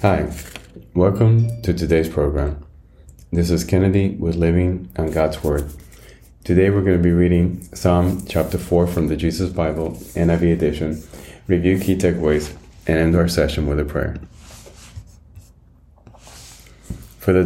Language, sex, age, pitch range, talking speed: English, male, 30-49, 80-90 Hz, 140 wpm